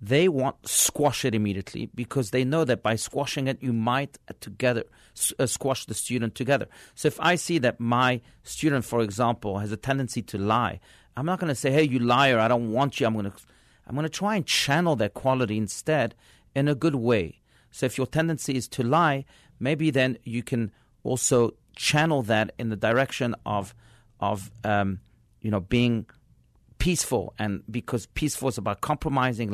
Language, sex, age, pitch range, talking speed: English, male, 40-59, 110-140 Hz, 185 wpm